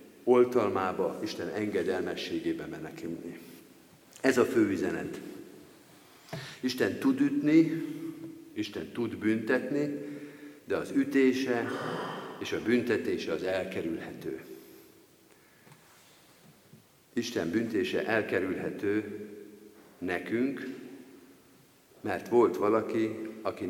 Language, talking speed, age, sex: Hungarian, 75 wpm, 50-69, male